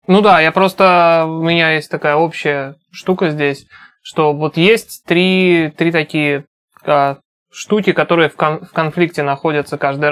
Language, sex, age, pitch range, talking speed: Russian, male, 20-39, 145-175 Hz, 135 wpm